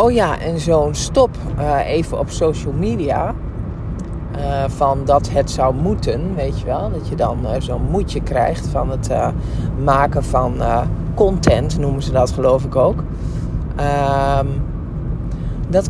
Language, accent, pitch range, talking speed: Dutch, Dutch, 130-155 Hz, 155 wpm